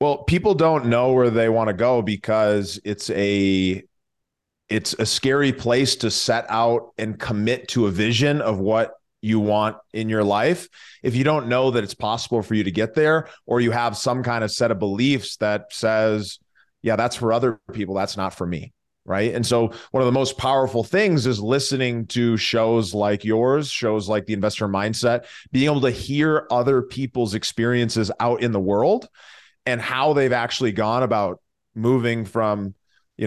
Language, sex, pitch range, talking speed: English, male, 110-130 Hz, 185 wpm